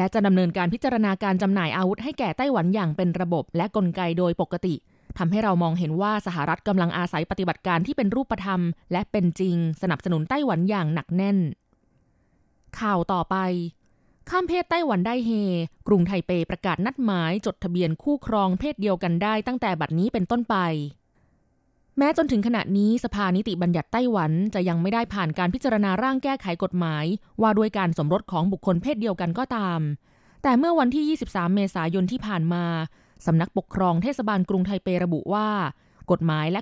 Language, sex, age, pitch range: Thai, female, 20-39, 175-215 Hz